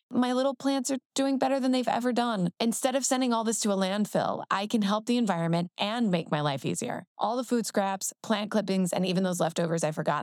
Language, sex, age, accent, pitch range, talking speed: English, female, 20-39, American, 175-230 Hz, 235 wpm